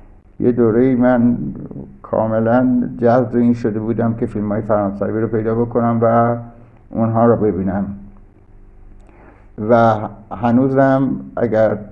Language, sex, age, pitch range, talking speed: Persian, male, 60-79, 100-120 Hz, 105 wpm